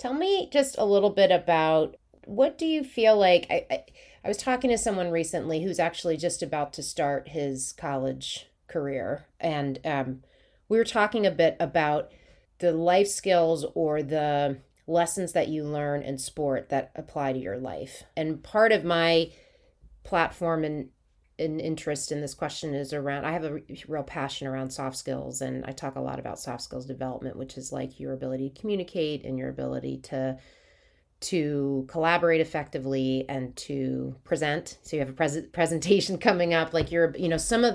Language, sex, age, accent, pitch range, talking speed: English, female, 30-49, American, 135-175 Hz, 180 wpm